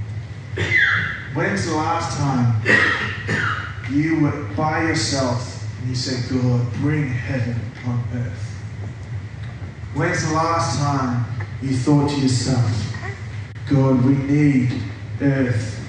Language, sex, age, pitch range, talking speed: English, male, 20-39, 105-145 Hz, 105 wpm